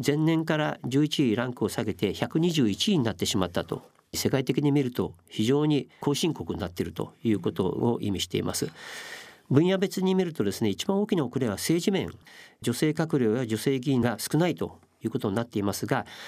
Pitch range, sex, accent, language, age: 110-160 Hz, male, native, Japanese, 50-69